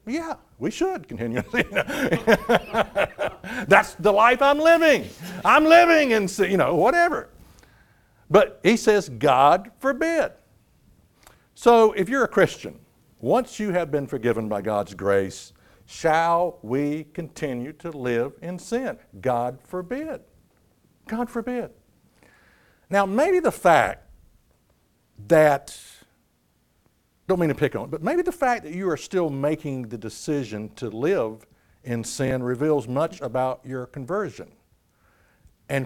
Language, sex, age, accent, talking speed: English, male, 60-79, American, 130 wpm